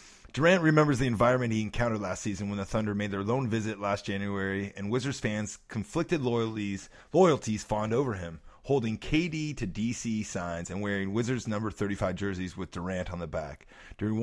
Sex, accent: male, American